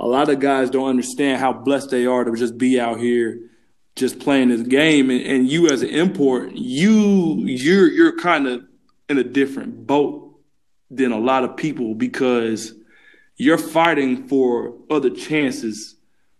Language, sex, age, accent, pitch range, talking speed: Polish, male, 20-39, American, 125-165 Hz, 165 wpm